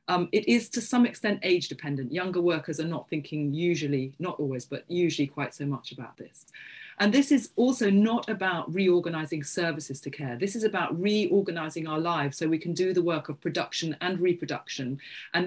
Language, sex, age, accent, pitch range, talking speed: English, female, 40-59, British, 155-190 Hz, 195 wpm